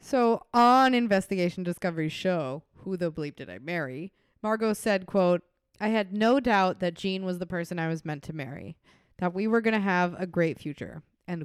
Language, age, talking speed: English, 20-39, 200 wpm